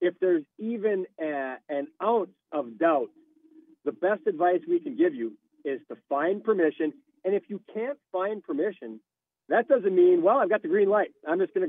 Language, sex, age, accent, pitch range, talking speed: English, male, 40-59, American, 155-230 Hz, 195 wpm